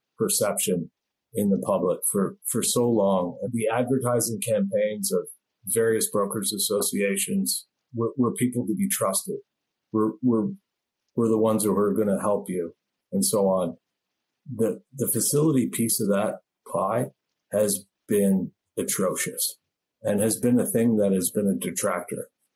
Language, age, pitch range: English, 50-69, 105-150 Hz